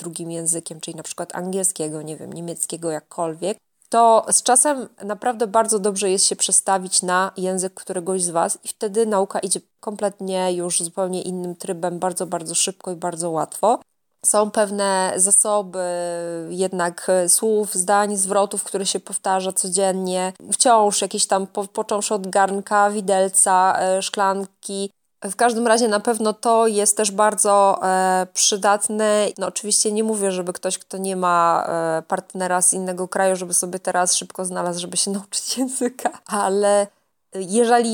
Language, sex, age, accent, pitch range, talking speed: Polish, female, 20-39, native, 185-215 Hz, 145 wpm